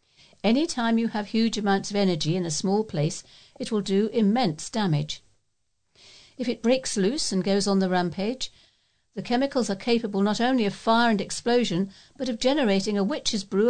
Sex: female